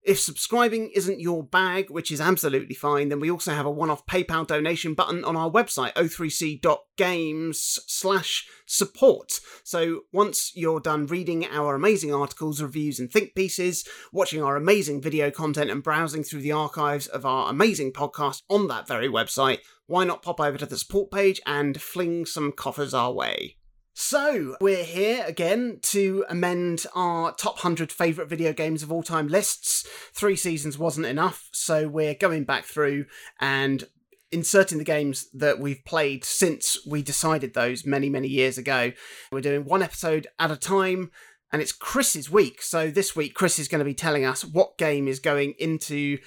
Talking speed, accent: 175 wpm, British